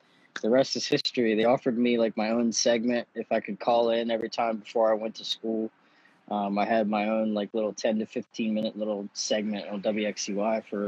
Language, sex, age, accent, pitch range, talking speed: English, male, 20-39, American, 105-120 Hz, 215 wpm